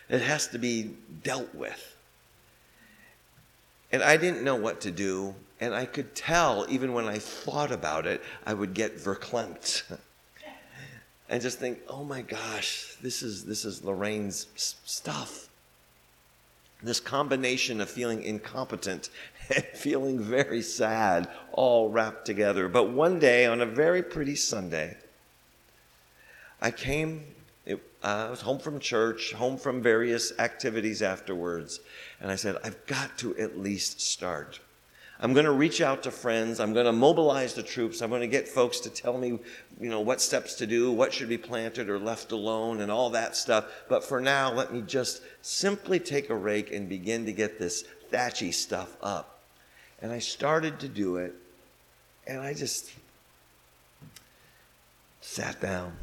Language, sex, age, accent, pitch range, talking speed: English, male, 50-69, American, 100-130 Hz, 160 wpm